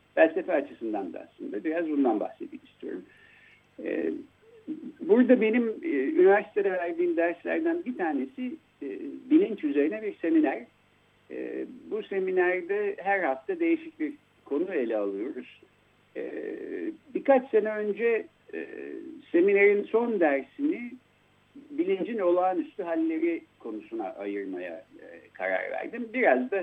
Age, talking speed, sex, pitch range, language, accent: 60-79, 95 wpm, male, 225-355 Hz, Turkish, native